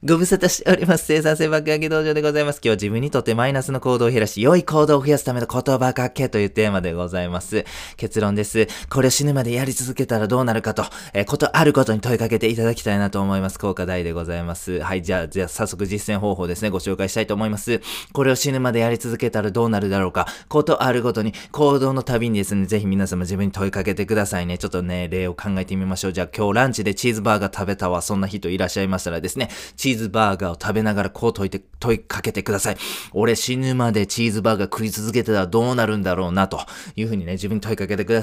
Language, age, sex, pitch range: Japanese, 20-39, male, 100-125 Hz